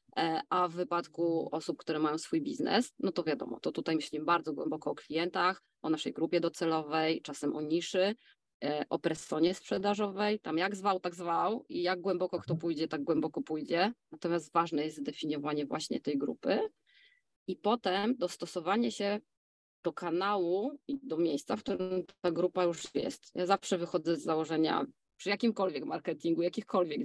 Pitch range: 165-205 Hz